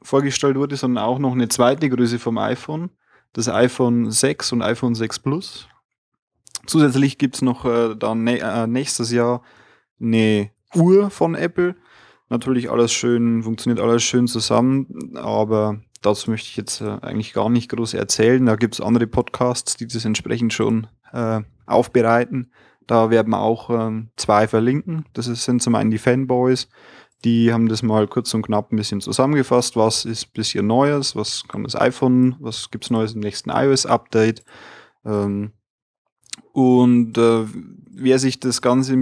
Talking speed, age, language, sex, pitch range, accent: 165 wpm, 20-39, German, male, 110-125 Hz, German